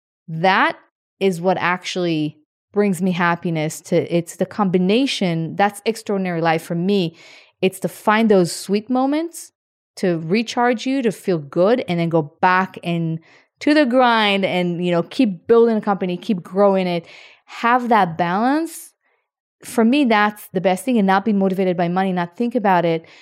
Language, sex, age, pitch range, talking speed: English, female, 30-49, 175-215 Hz, 170 wpm